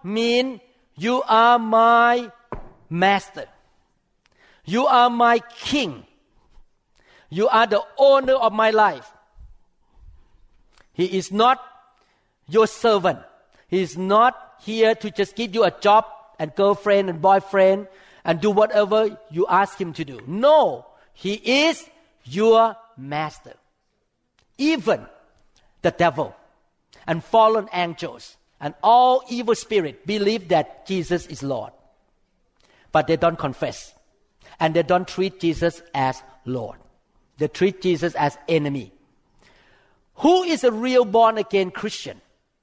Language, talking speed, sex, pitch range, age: English, 120 wpm, male, 170-245 Hz, 50-69